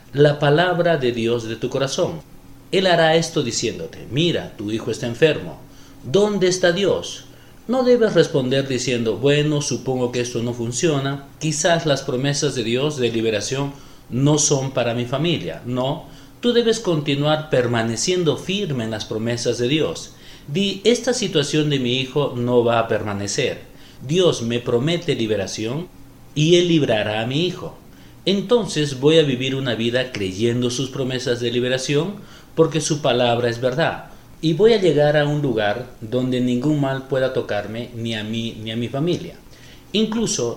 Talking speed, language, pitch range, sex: 160 wpm, Spanish, 120-160 Hz, male